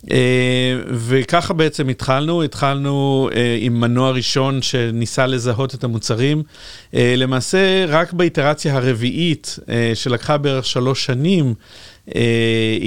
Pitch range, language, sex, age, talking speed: 115-140 Hz, Hebrew, male, 40-59, 110 wpm